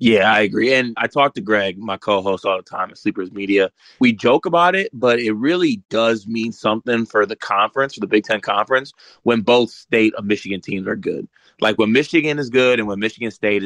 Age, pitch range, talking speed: 20-39, 100-125 Hz, 225 wpm